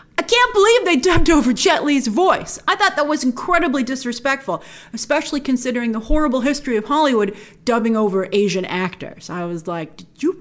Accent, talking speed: American, 180 wpm